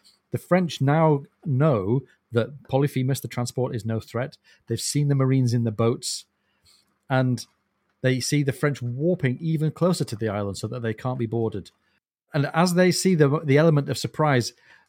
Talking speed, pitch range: 175 wpm, 115-145 Hz